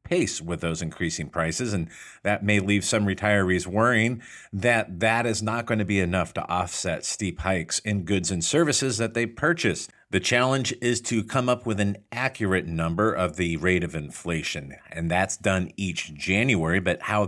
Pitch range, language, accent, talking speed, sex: 85-105 Hz, English, American, 185 wpm, male